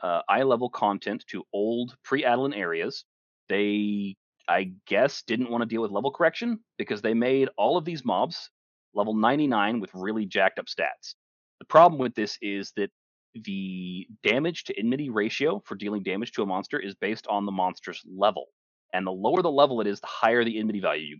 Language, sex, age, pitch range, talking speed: English, male, 30-49, 95-125 Hz, 195 wpm